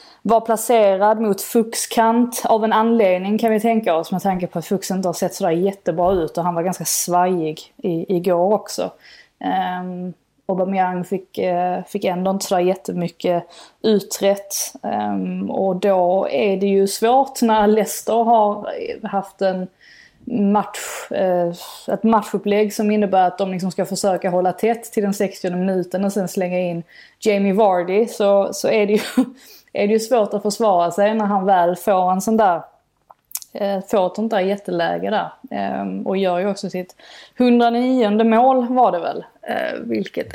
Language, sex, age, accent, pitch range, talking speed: Swedish, female, 20-39, native, 185-220 Hz, 160 wpm